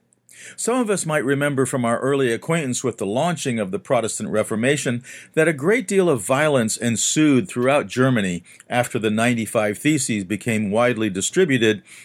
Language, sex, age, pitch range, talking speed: English, male, 50-69, 120-160 Hz, 160 wpm